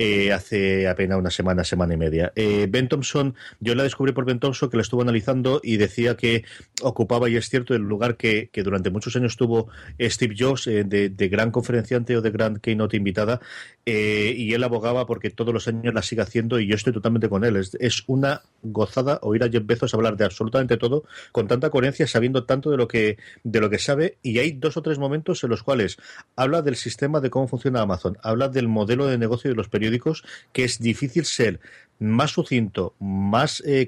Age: 30-49